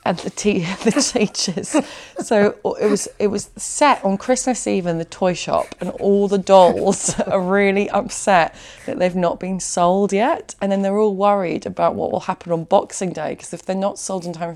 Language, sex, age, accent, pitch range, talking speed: English, female, 20-39, British, 190-260 Hz, 205 wpm